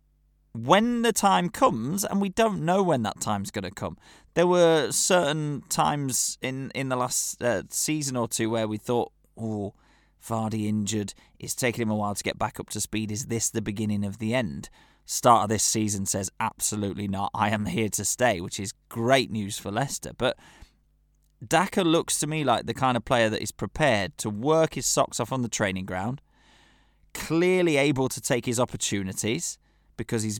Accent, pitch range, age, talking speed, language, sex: British, 105-140 Hz, 20-39, 195 wpm, English, male